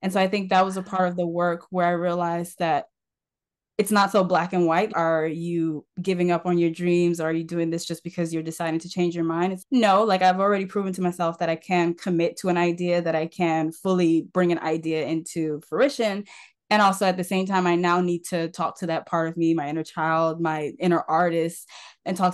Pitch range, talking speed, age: 165-190 Hz, 240 wpm, 10-29